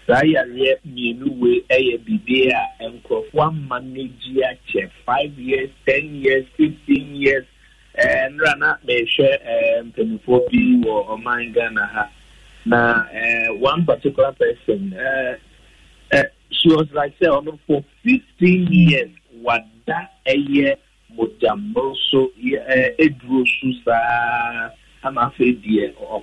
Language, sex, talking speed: English, male, 90 wpm